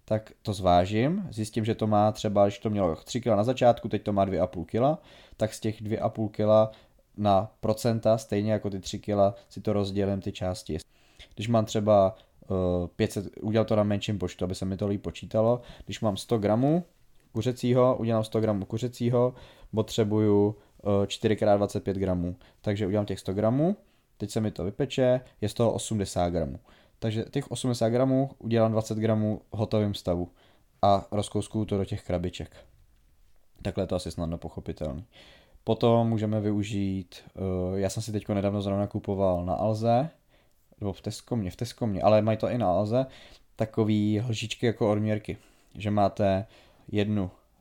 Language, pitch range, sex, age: Czech, 100-110 Hz, male, 20-39